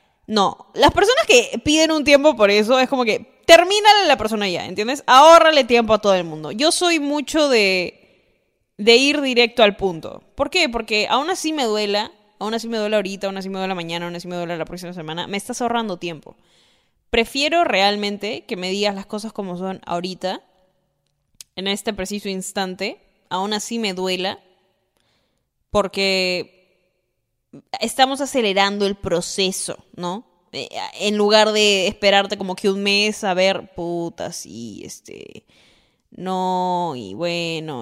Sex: female